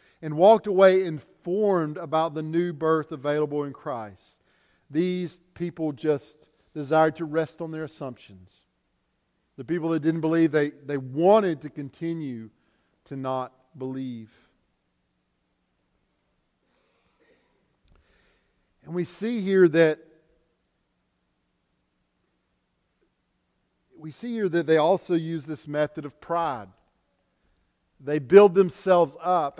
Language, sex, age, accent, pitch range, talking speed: English, male, 50-69, American, 140-190 Hz, 105 wpm